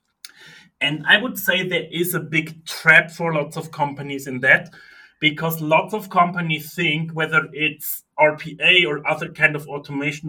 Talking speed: 165 wpm